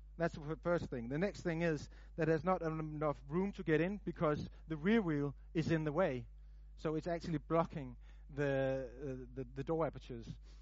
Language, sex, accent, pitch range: English, male, Danish, 135-175 Hz